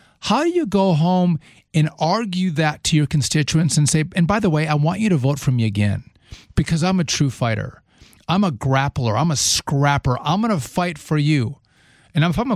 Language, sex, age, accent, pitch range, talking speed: English, male, 40-59, American, 135-175 Hz, 220 wpm